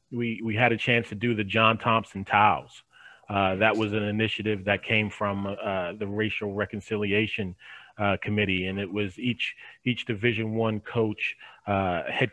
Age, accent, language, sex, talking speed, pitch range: 30-49, American, English, male, 170 wpm, 105-120 Hz